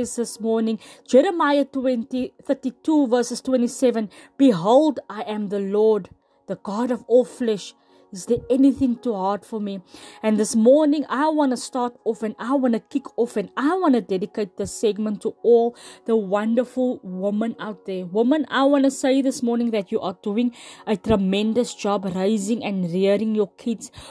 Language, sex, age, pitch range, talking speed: English, female, 20-39, 220-270 Hz, 175 wpm